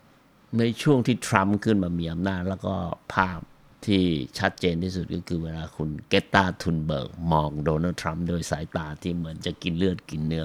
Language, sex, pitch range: Thai, male, 80-95 Hz